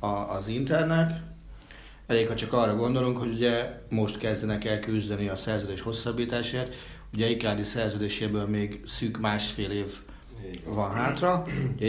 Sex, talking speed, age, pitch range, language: male, 130 wpm, 40-59, 100-115 Hz, Hungarian